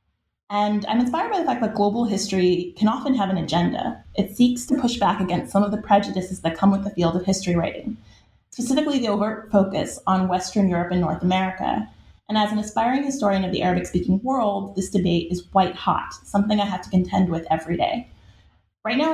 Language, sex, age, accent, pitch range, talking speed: English, female, 30-49, American, 180-215 Hz, 205 wpm